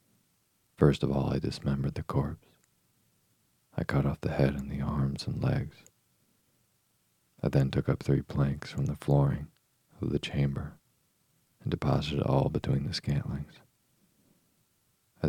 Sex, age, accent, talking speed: male, 40-59, American, 140 wpm